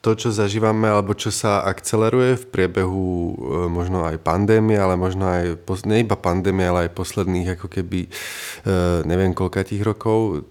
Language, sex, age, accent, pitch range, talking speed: Czech, male, 20-39, native, 90-105 Hz, 160 wpm